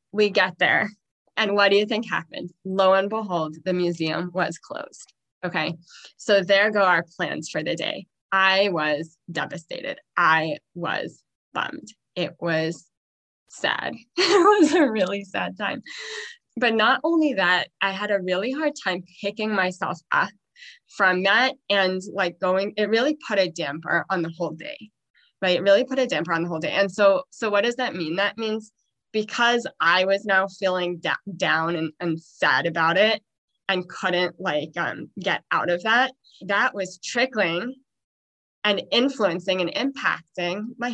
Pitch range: 180-230 Hz